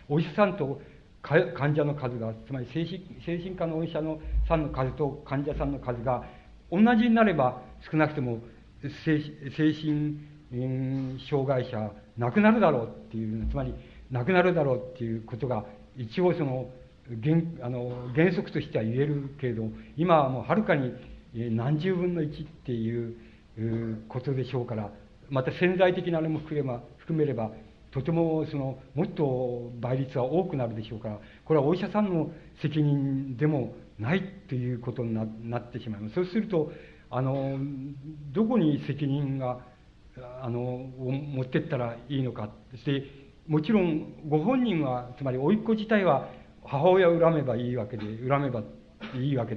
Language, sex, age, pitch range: Japanese, male, 60-79, 120-155 Hz